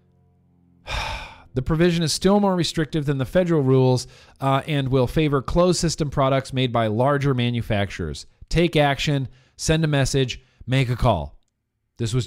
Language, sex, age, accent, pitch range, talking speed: English, male, 40-59, American, 115-160 Hz, 150 wpm